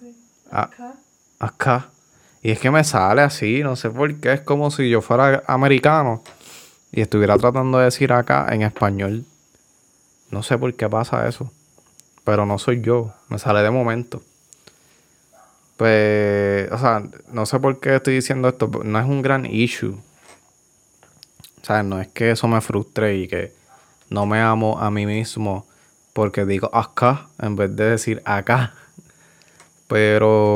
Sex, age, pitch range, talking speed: male, 20-39, 100-120 Hz, 155 wpm